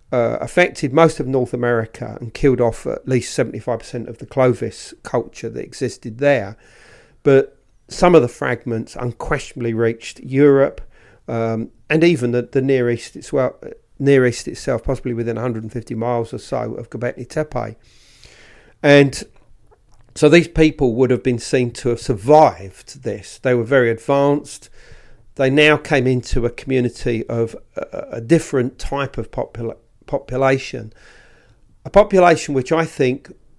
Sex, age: male, 40-59